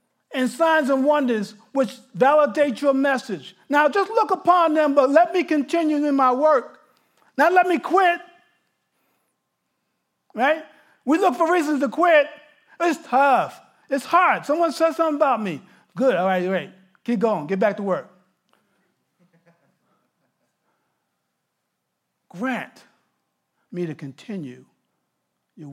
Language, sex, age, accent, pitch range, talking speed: English, male, 50-69, American, 165-280 Hz, 130 wpm